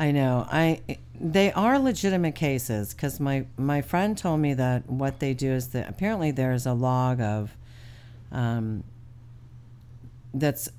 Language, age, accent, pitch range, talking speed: English, 50-69, American, 120-165 Hz, 150 wpm